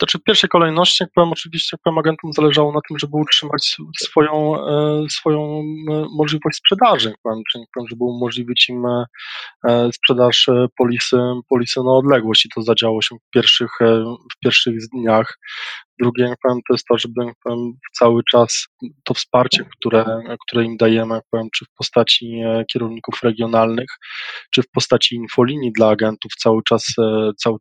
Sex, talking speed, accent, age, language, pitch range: male, 155 wpm, native, 20-39, Polish, 115-125 Hz